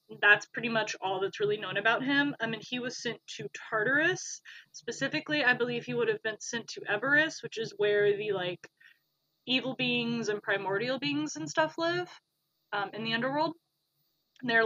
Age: 20-39